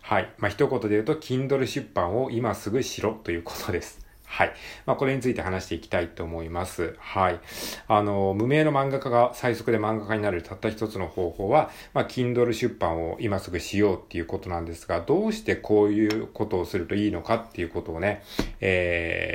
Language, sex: Japanese, male